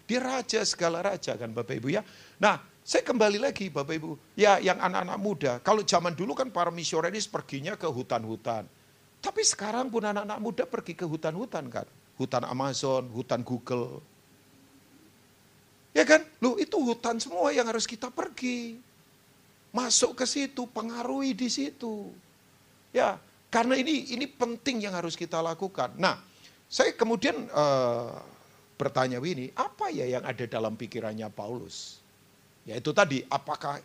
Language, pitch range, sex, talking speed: Indonesian, 125-210 Hz, male, 145 wpm